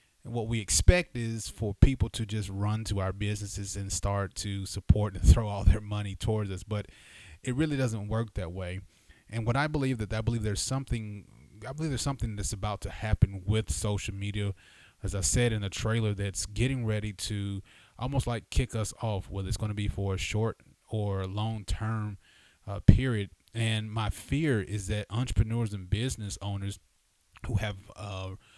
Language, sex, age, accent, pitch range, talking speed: English, male, 30-49, American, 100-115 Hz, 185 wpm